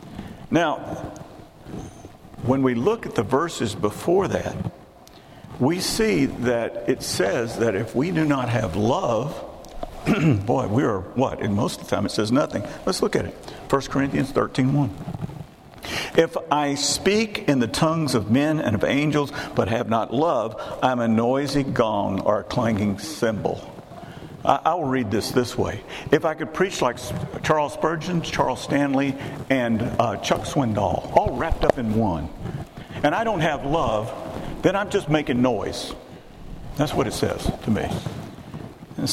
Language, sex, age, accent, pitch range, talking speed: English, male, 50-69, American, 115-145 Hz, 160 wpm